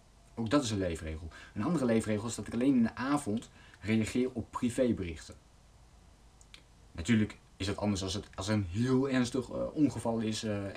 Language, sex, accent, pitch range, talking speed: Dutch, male, Dutch, 90-110 Hz, 185 wpm